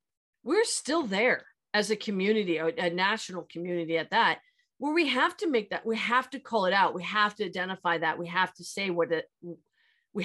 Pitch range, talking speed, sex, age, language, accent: 175-230 Hz, 205 wpm, female, 40-59, English, American